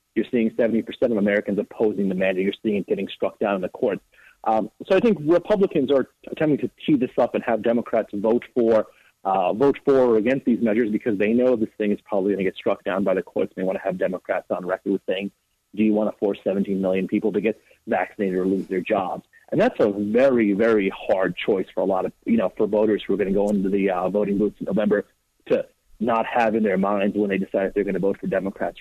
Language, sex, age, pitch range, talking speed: English, male, 30-49, 100-125 Hz, 250 wpm